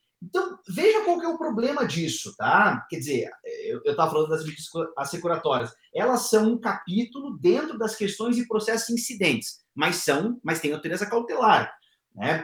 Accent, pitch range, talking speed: Brazilian, 145-230 Hz, 160 wpm